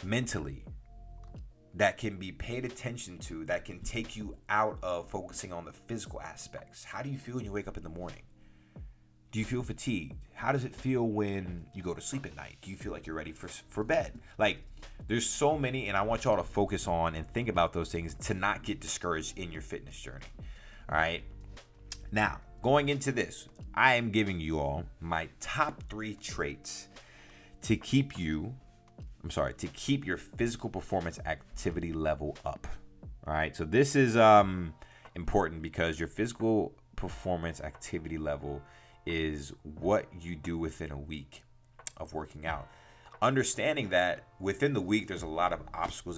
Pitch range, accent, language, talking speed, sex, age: 80-110 Hz, American, English, 180 wpm, male, 30-49